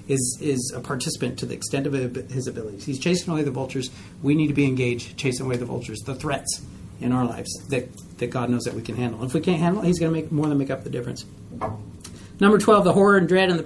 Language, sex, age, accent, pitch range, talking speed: English, male, 40-59, American, 130-185 Hz, 265 wpm